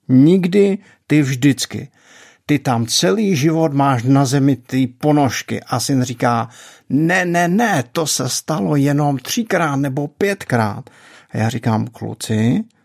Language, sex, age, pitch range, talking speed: Czech, male, 50-69, 115-140 Hz, 135 wpm